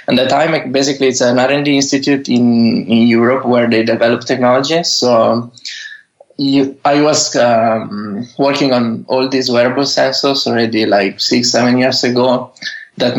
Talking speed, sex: 150 wpm, male